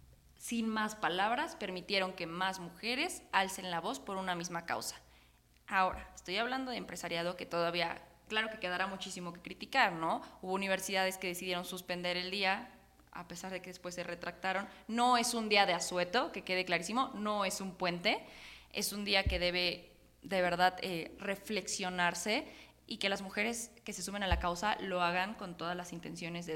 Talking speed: 185 wpm